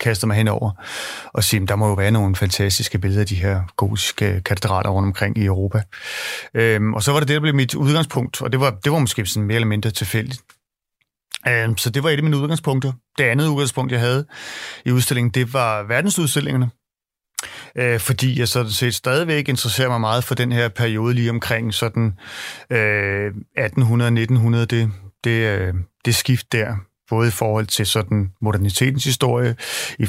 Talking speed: 185 wpm